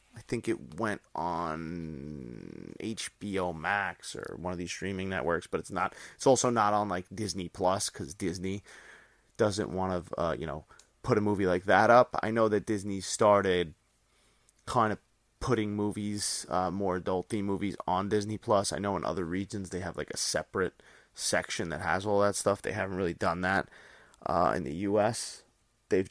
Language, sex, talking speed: English, male, 180 wpm